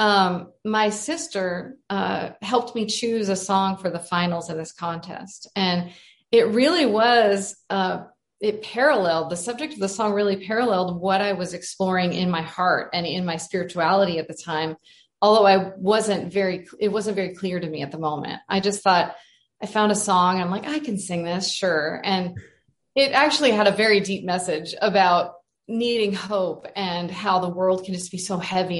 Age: 30-49